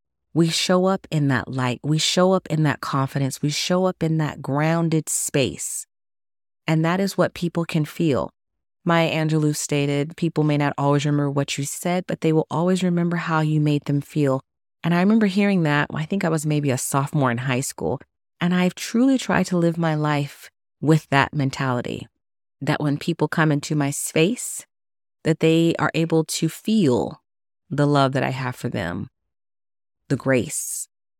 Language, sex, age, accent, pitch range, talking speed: English, female, 30-49, American, 135-165 Hz, 185 wpm